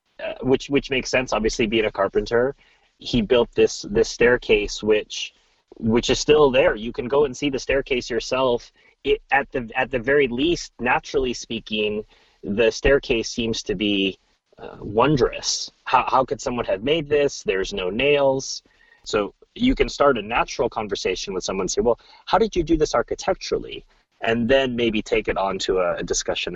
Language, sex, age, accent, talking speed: English, male, 30-49, American, 185 wpm